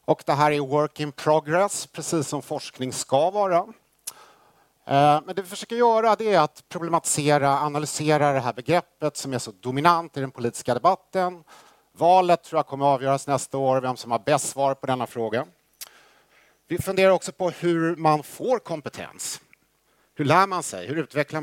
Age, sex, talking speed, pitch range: 50-69, male, 175 wpm, 120-165 Hz